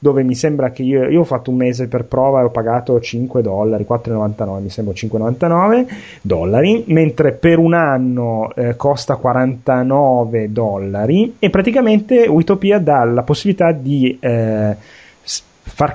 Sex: male